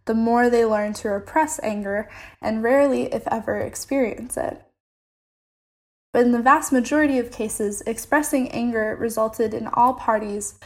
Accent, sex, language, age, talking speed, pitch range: American, female, English, 10-29, 145 wpm, 210-255 Hz